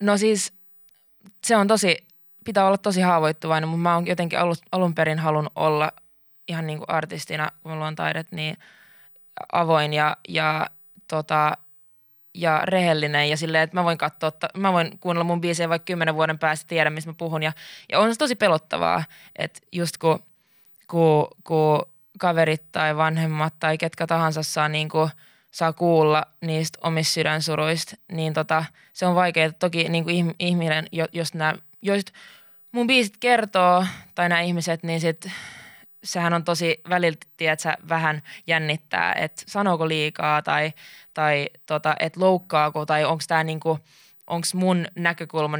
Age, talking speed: 20-39, 155 wpm